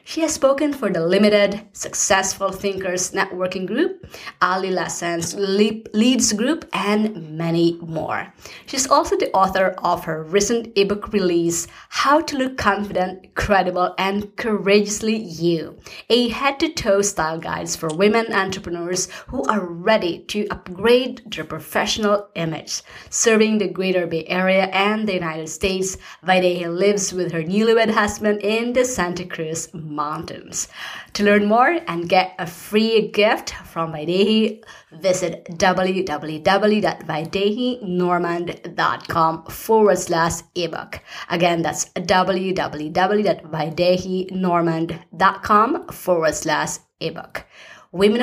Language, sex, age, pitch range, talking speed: English, female, 30-49, 170-215 Hz, 115 wpm